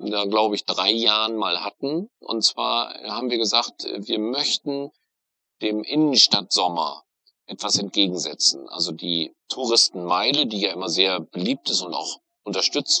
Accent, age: German, 40-59